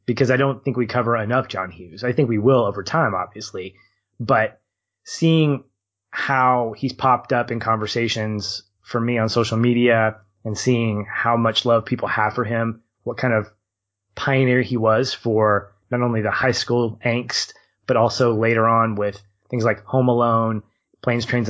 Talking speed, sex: 175 wpm, male